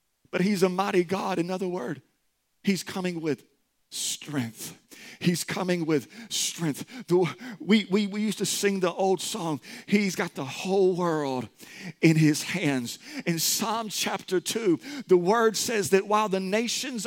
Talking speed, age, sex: 155 wpm, 50-69, male